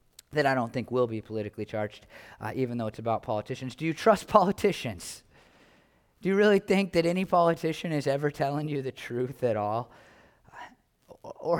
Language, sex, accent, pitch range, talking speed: English, male, American, 145-225 Hz, 175 wpm